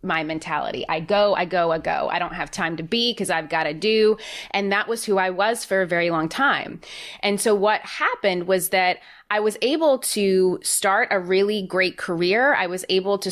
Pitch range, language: 175-215 Hz, English